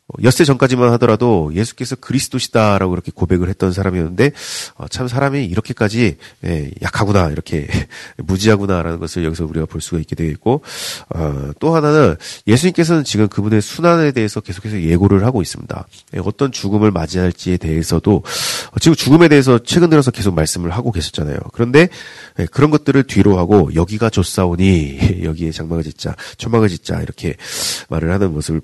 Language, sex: Korean, male